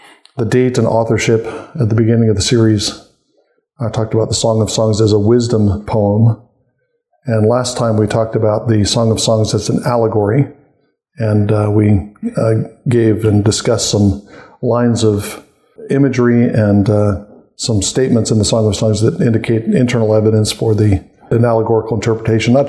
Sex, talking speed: male, 165 wpm